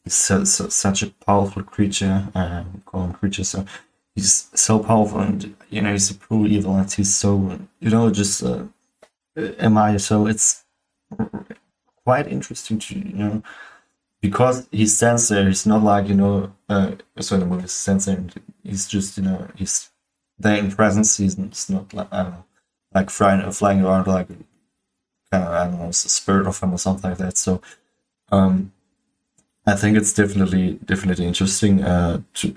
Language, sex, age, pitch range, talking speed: German, male, 20-39, 90-105 Hz, 175 wpm